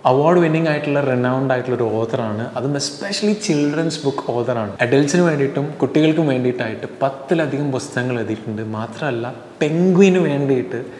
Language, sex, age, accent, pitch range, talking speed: Malayalam, male, 20-39, native, 115-145 Hz, 120 wpm